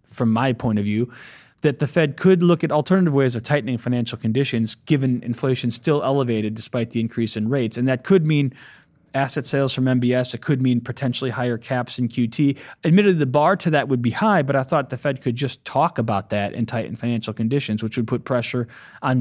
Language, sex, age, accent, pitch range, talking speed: English, male, 20-39, American, 120-150 Hz, 215 wpm